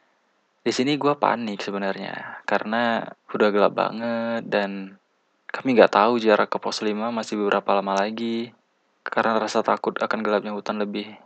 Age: 20-39